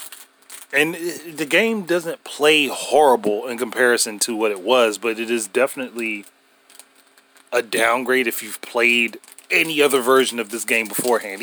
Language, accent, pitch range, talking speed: English, American, 115-150 Hz, 145 wpm